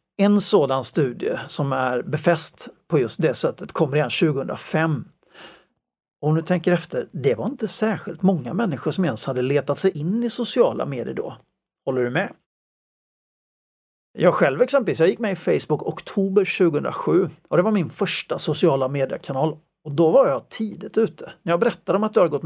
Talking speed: 180 wpm